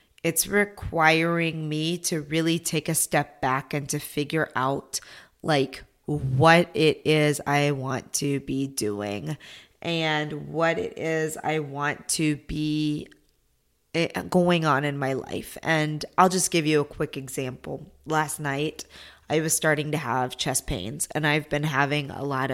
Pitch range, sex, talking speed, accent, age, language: 140-165 Hz, female, 155 wpm, American, 20-39, English